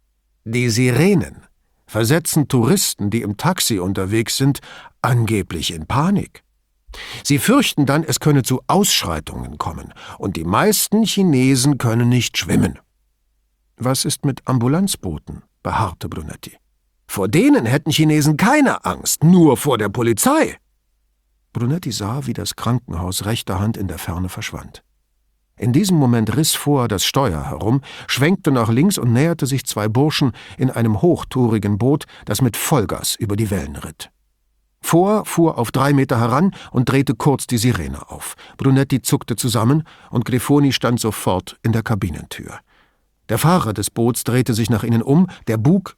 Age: 50-69